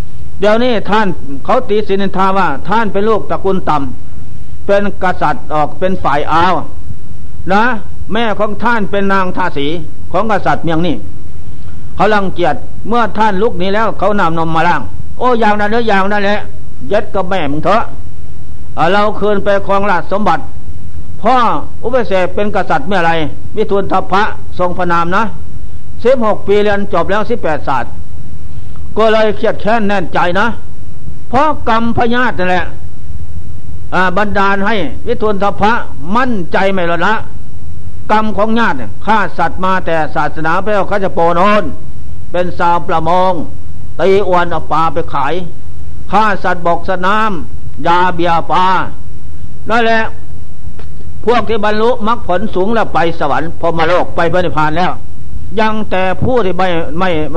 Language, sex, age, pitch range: Thai, male, 60-79, 165-210 Hz